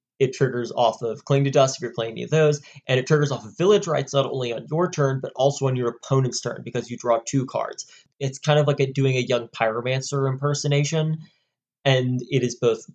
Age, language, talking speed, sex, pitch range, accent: 20-39, English, 230 wpm, male, 120-145 Hz, American